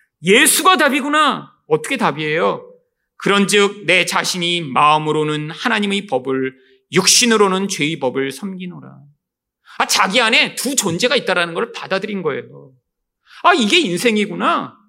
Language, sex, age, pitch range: Korean, male, 40-59, 185-270 Hz